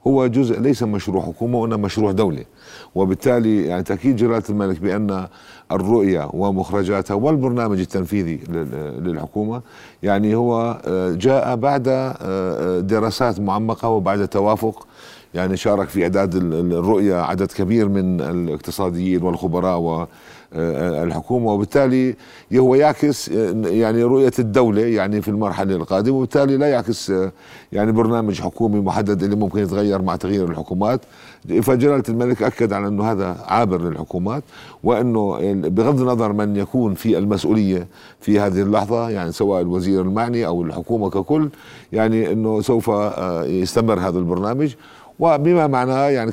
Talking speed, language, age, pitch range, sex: 125 wpm, Arabic, 50-69, 90-115 Hz, male